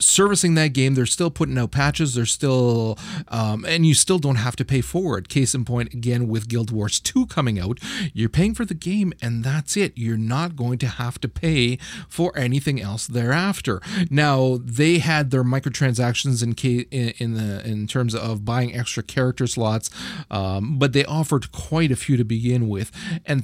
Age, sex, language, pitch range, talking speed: 30-49, male, English, 115-145 Hz, 195 wpm